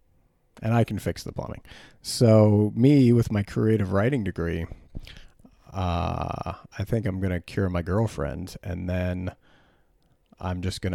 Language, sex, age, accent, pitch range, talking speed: English, male, 40-59, American, 90-110 Hz, 150 wpm